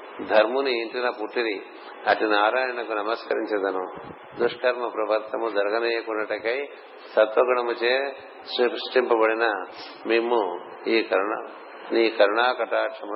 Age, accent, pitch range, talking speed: 60-79, native, 110-125 Hz, 65 wpm